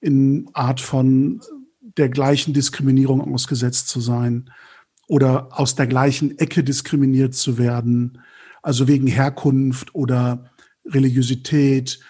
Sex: male